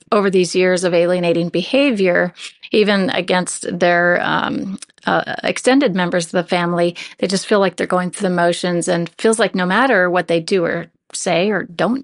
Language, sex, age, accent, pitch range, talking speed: English, female, 40-59, American, 175-210 Hz, 185 wpm